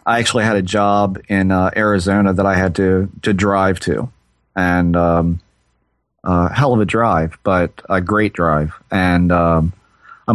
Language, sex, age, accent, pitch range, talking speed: English, male, 30-49, American, 90-110 Hz, 175 wpm